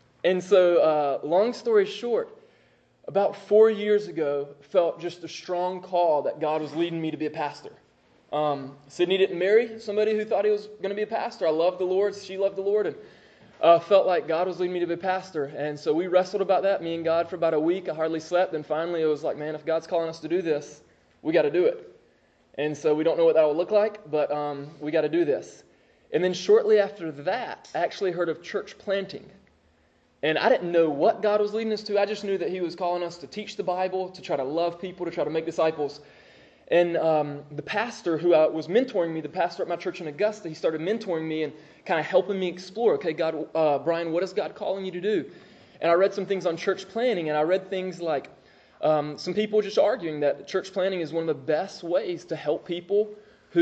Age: 20-39